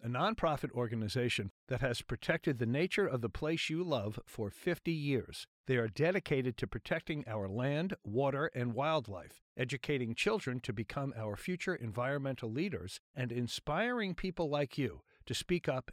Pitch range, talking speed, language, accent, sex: 120-165 Hz, 160 wpm, English, American, male